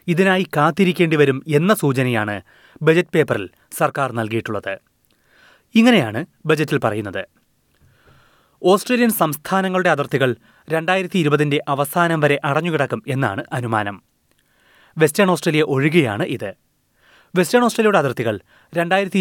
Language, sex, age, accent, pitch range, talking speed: Malayalam, male, 30-49, native, 130-175 Hz, 90 wpm